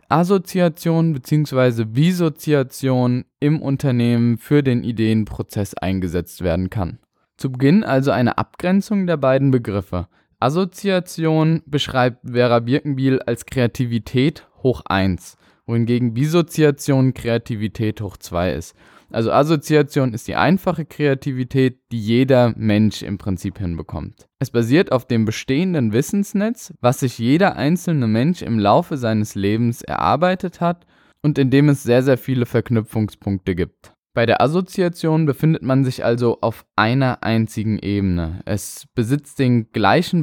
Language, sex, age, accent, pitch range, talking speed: German, male, 20-39, German, 115-150 Hz, 130 wpm